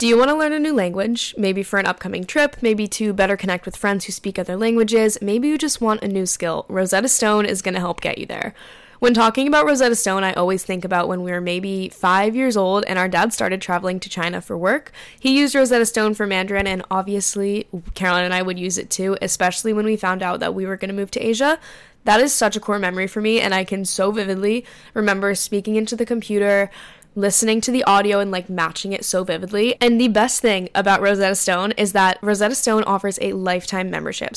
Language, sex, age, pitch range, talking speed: English, female, 10-29, 190-225 Hz, 235 wpm